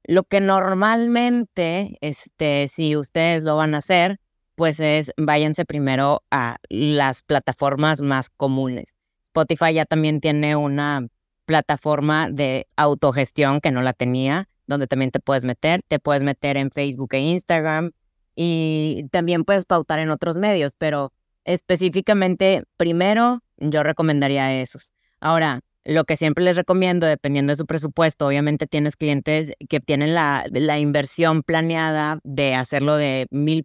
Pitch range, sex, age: 145-170 Hz, female, 20-39